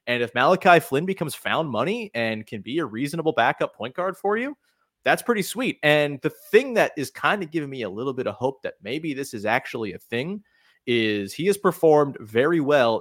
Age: 30-49